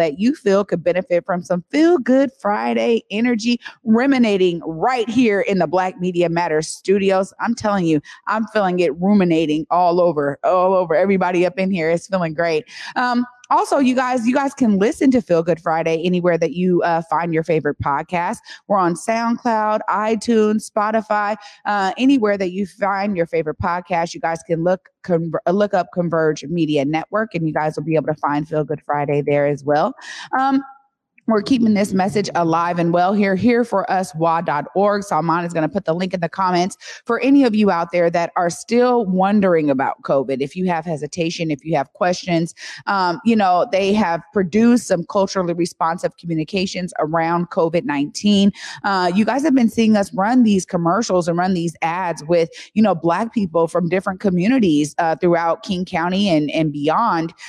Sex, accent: female, American